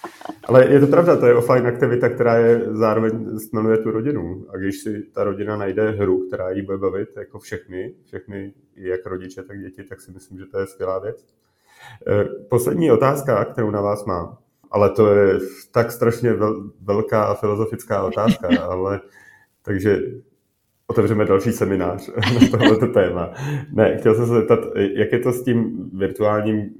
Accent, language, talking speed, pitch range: native, Czech, 165 wpm, 95-110 Hz